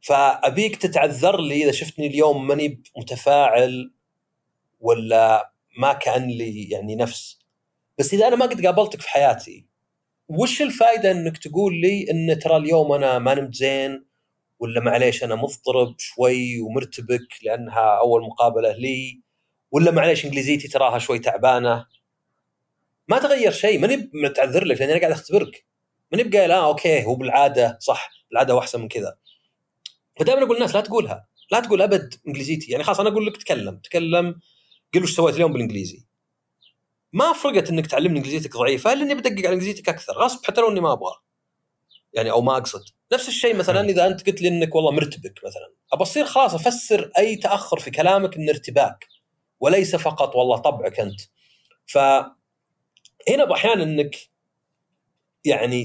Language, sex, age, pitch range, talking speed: Arabic, male, 30-49, 130-205 Hz, 155 wpm